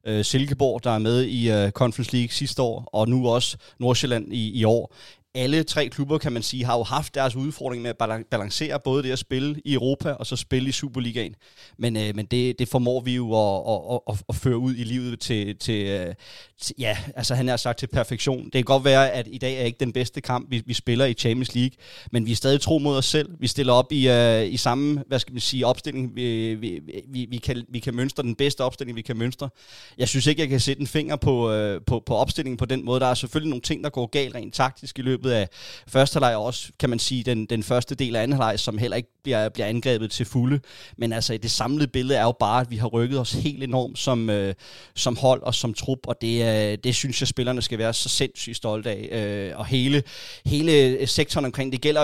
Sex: male